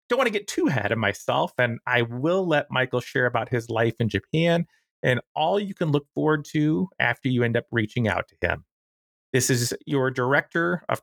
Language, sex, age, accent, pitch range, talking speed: English, male, 30-49, American, 125-160 Hz, 210 wpm